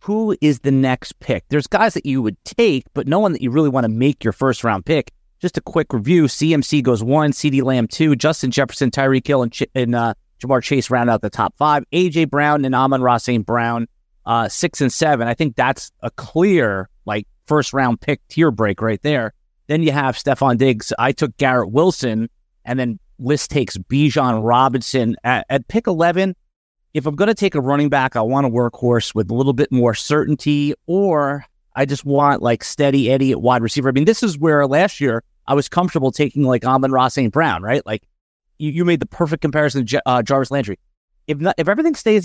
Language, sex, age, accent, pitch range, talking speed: English, male, 30-49, American, 125-160 Hz, 215 wpm